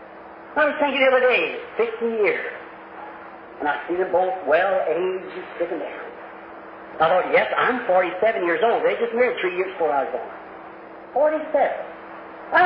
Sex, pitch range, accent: male, 265-360 Hz, American